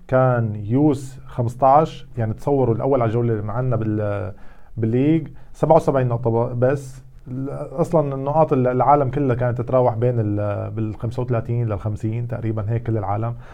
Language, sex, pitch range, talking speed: Arabic, male, 110-135 Hz, 120 wpm